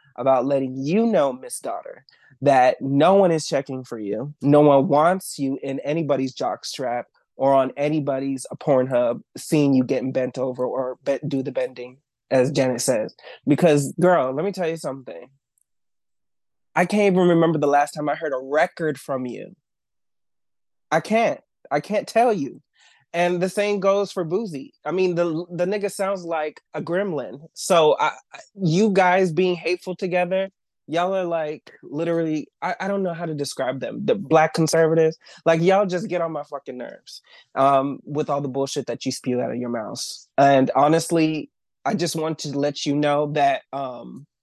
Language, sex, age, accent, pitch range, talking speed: English, male, 20-39, American, 135-180 Hz, 180 wpm